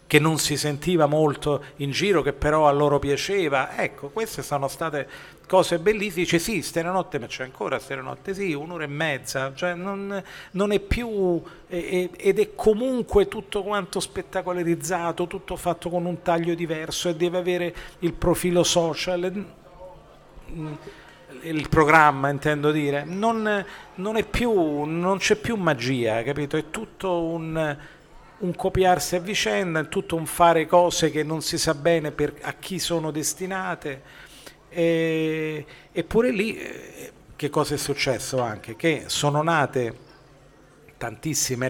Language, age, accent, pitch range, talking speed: Italian, 40-59, native, 140-180 Hz, 140 wpm